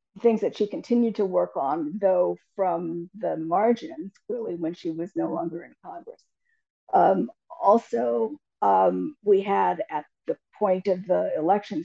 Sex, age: female, 50-69